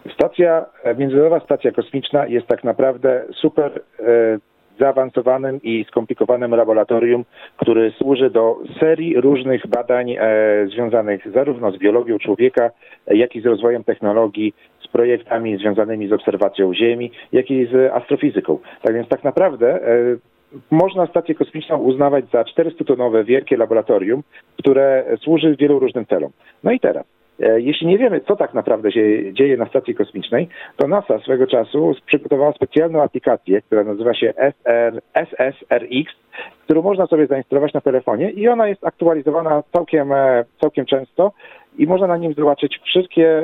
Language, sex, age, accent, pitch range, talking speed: Polish, male, 40-59, native, 120-160 Hz, 135 wpm